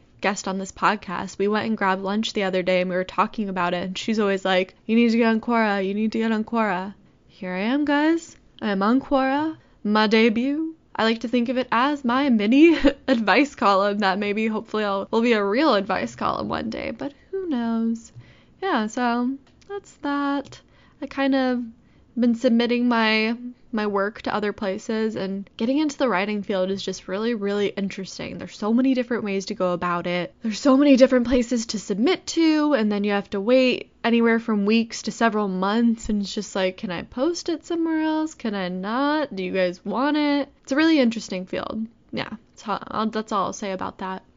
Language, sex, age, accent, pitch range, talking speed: English, female, 10-29, American, 200-265 Hz, 210 wpm